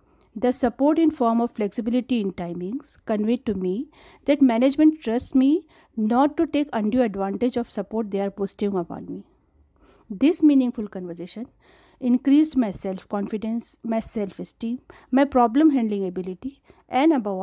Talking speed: 140 wpm